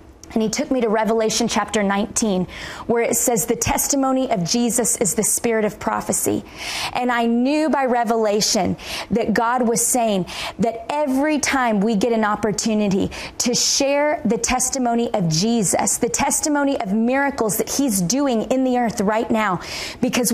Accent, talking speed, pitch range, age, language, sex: American, 160 wpm, 215-265 Hz, 30-49, English, female